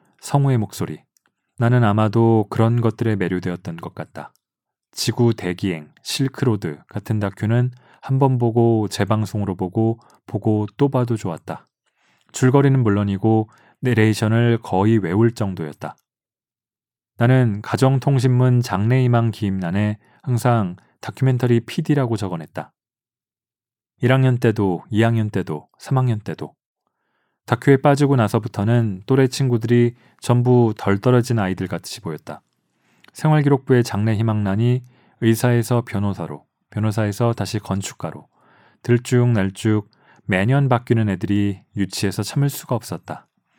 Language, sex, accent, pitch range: Korean, male, native, 100-125 Hz